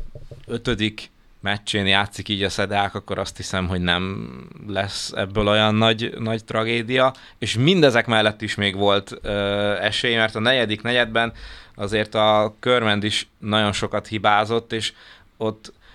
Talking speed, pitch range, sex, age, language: 145 wpm, 100-115 Hz, male, 20-39, Hungarian